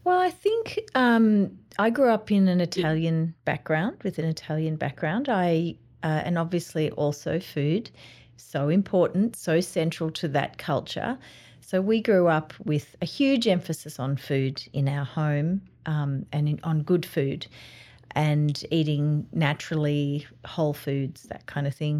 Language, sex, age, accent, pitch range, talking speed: English, female, 40-59, Australian, 140-175 Hz, 145 wpm